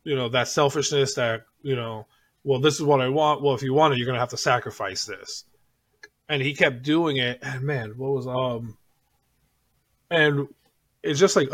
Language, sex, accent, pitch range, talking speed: English, male, American, 120-145 Hz, 205 wpm